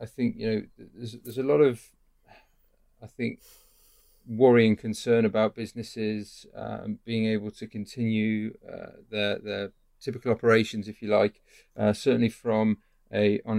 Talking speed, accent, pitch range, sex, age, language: 145 wpm, British, 105-120 Hz, male, 40-59, English